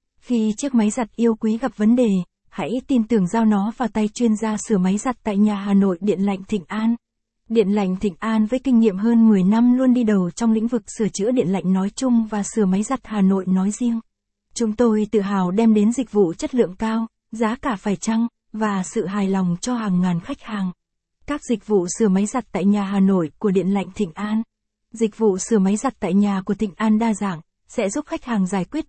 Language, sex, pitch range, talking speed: Vietnamese, female, 200-235 Hz, 240 wpm